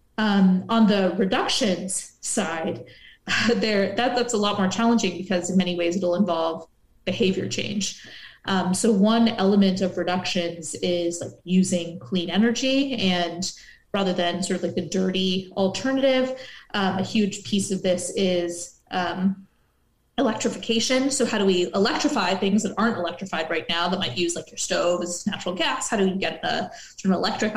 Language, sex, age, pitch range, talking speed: English, female, 20-39, 180-210 Hz, 165 wpm